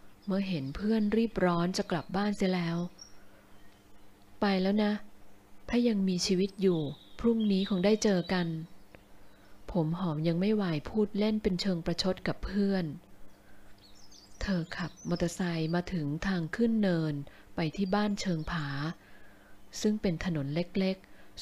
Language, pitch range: Thai, 145-195 Hz